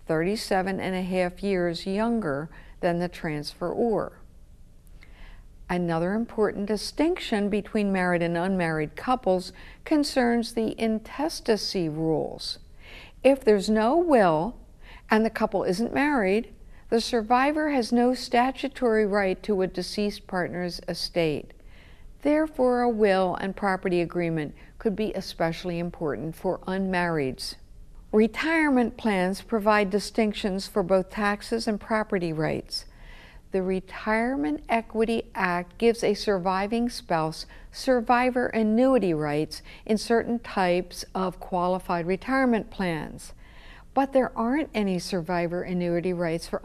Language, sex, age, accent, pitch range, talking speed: English, female, 60-79, American, 175-230 Hz, 115 wpm